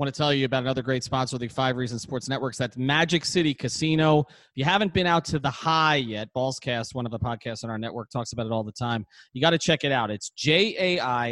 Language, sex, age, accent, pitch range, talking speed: English, male, 30-49, American, 120-155 Hz, 265 wpm